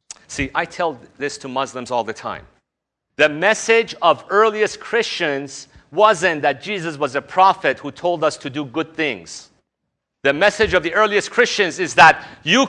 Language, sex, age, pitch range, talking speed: English, male, 40-59, 135-180 Hz, 170 wpm